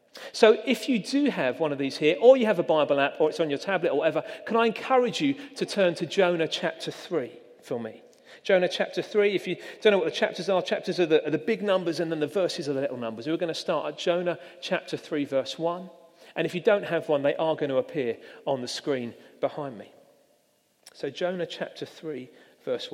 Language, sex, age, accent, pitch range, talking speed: English, male, 40-59, British, 155-215 Hz, 235 wpm